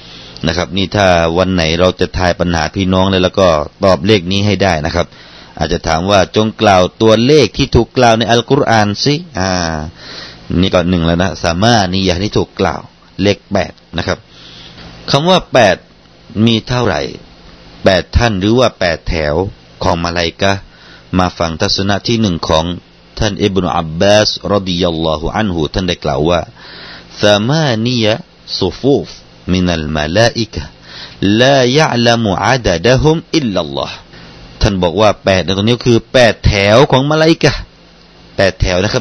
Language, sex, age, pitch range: Thai, male, 30-49, 90-115 Hz